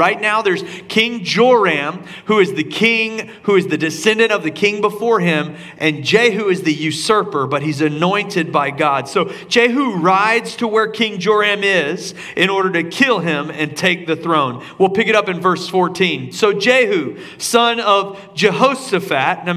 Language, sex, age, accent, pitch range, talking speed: English, male, 40-59, American, 140-200 Hz, 180 wpm